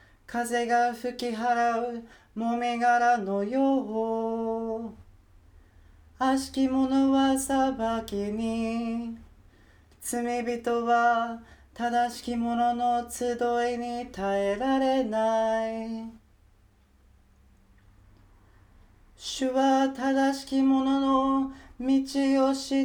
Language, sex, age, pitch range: Japanese, male, 30-49, 215-265 Hz